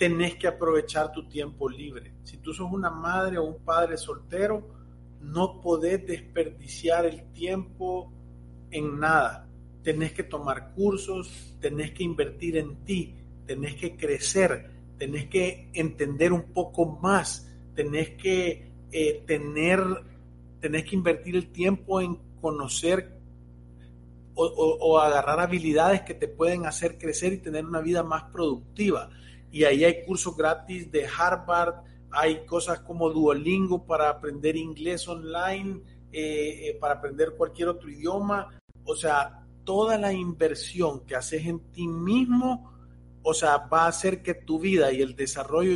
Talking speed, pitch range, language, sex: 145 wpm, 135-175 Hz, Spanish, male